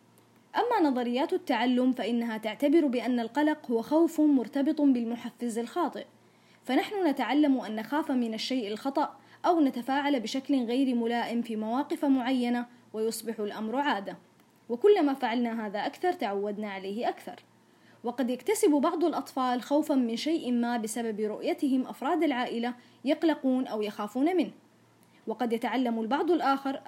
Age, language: 20-39, Arabic